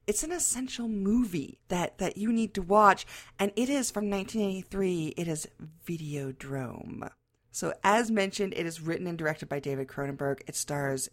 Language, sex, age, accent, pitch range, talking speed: English, female, 40-59, American, 150-225 Hz, 165 wpm